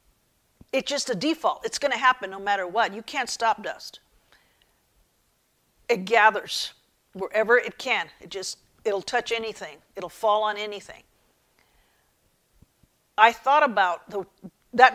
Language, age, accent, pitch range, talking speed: English, 50-69, American, 200-255 Hz, 135 wpm